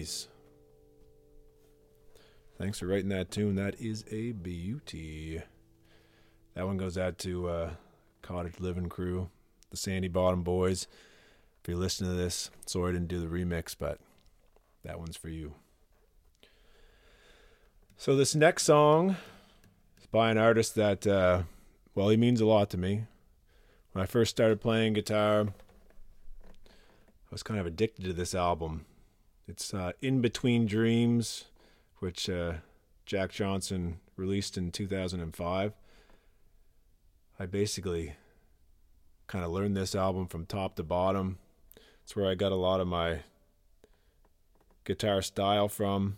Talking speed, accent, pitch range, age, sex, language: 135 wpm, American, 90-105 Hz, 40-59, male, English